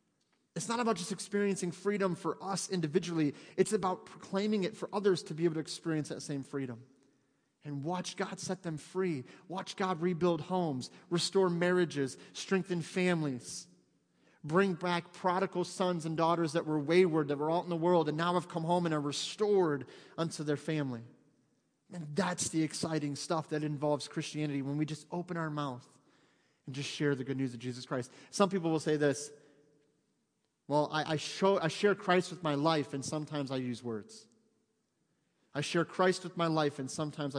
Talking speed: 185 wpm